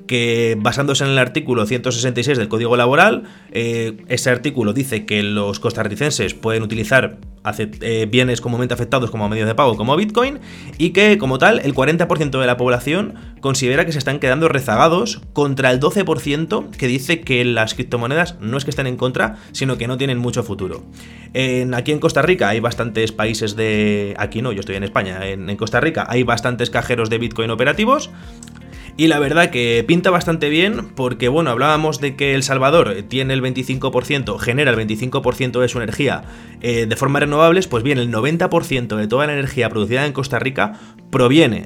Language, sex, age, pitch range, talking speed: Spanish, male, 20-39, 110-145 Hz, 185 wpm